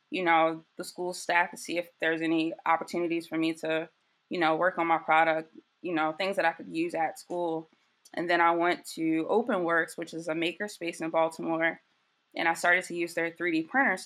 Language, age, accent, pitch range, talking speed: English, 20-39, American, 165-195 Hz, 215 wpm